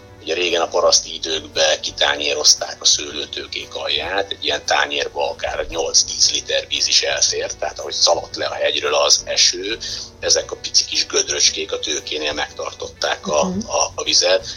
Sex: male